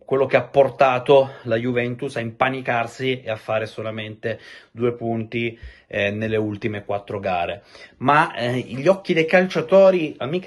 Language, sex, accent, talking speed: Italian, male, native, 150 wpm